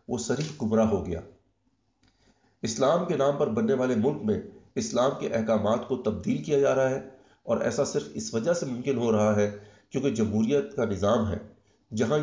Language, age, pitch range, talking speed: Urdu, 50-69, 110-165 Hz, 185 wpm